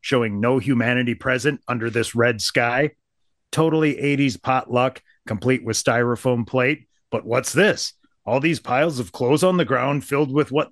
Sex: male